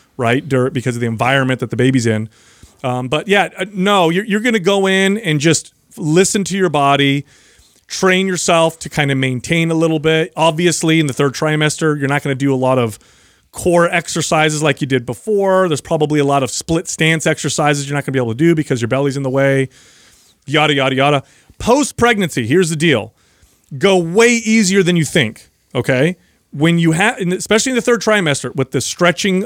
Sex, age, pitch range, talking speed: male, 30-49, 135-175 Hz, 200 wpm